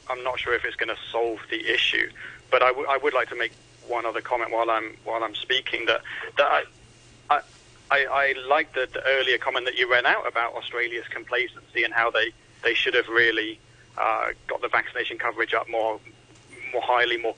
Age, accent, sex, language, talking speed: 40-59, British, male, English, 210 wpm